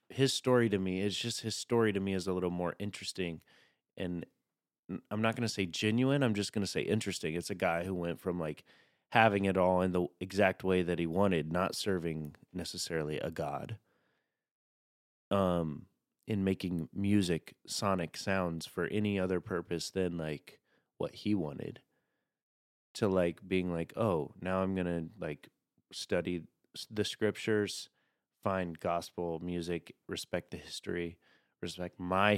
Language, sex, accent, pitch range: English, male, American, 85-105 Hz